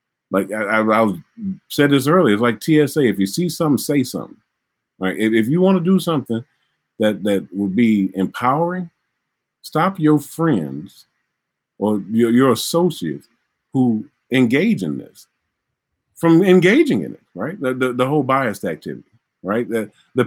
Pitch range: 105-150 Hz